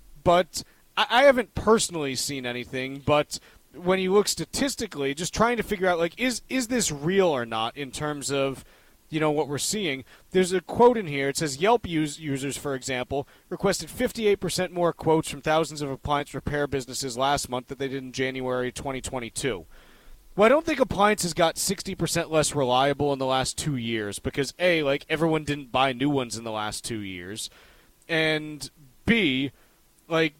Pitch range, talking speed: 135-175 Hz, 180 wpm